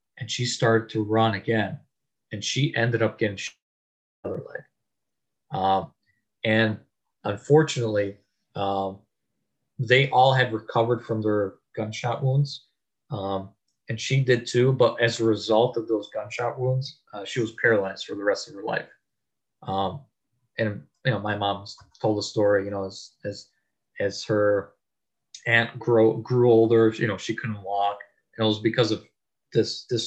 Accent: American